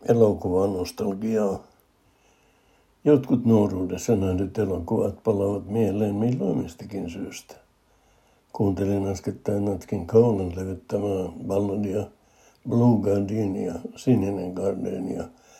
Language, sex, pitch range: Finnish, male, 95-110 Hz